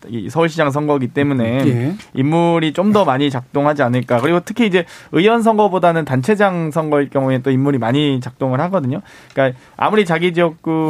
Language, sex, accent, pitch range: Korean, male, native, 130-160 Hz